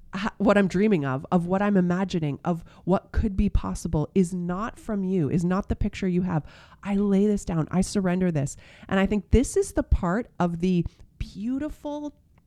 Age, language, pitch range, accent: 30-49, English, 170-225 Hz, American